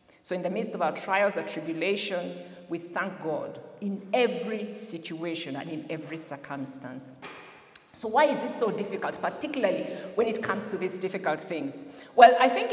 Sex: female